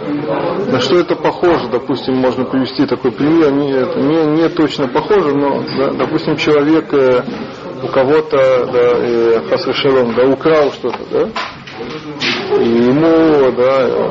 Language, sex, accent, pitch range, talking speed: Russian, male, native, 135-170 Hz, 115 wpm